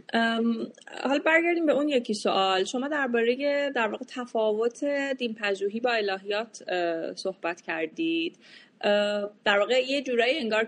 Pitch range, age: 160-225 Hz, 30-49